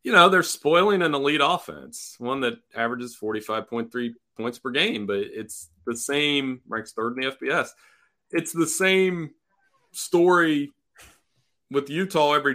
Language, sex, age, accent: English, male, 30-49, American